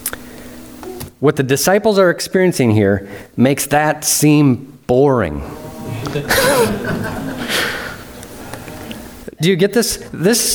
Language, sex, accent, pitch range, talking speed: English, male, American, 135-195 Hz, 85 wpm